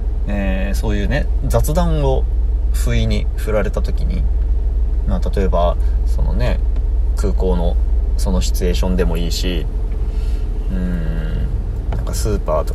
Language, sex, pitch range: Japanese, male, 65-85 Hz